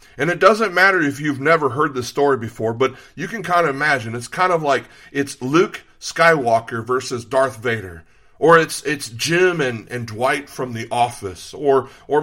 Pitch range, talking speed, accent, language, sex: 120-150 Hz, 190 wpm, American, English, male